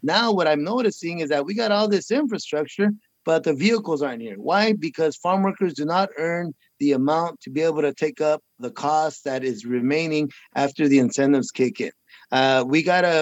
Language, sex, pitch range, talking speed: English, male, 140-175 Hz, 200 wpm